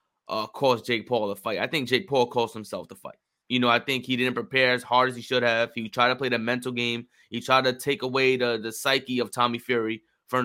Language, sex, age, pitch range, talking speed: English, male, 20-39, 120-135 Hz, 265 wpm